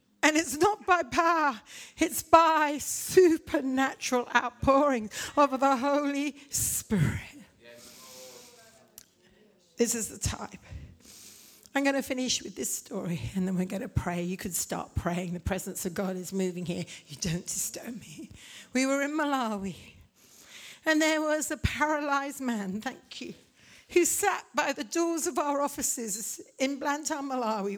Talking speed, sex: 145 wpm, female